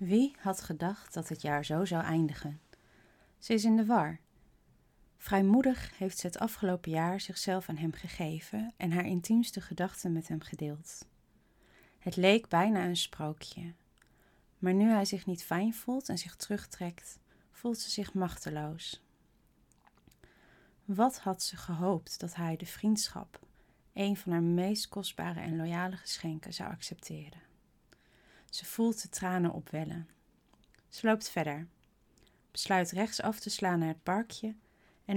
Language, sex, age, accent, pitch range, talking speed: Dutch, female, 30-49, Dutch, 165-210 Hz, 145 wpm